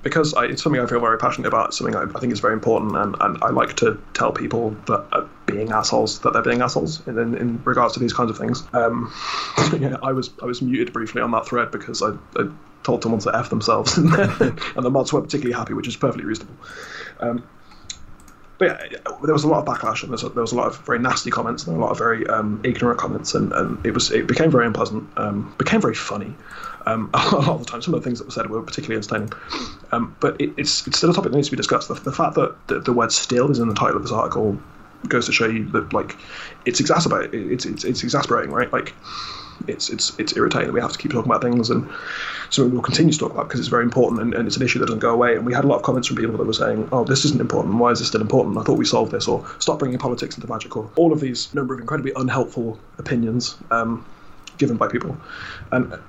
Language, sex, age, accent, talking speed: English, male, 20-39, British, 260 wpm